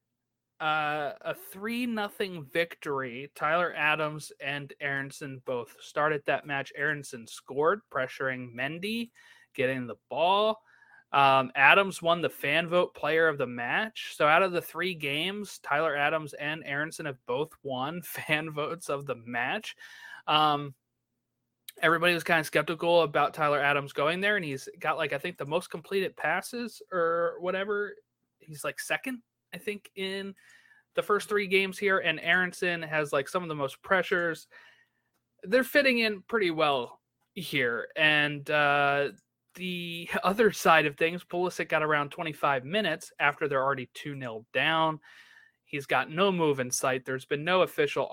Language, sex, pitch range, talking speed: English, male, 140-190 Hz, 155 wpm